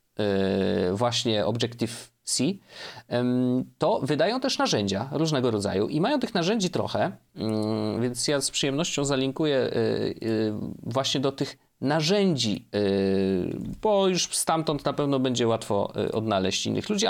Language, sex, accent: Polish, male, native